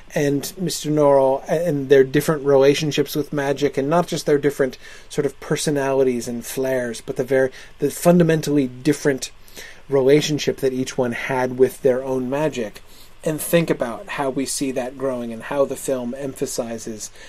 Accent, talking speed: American, 165 wpm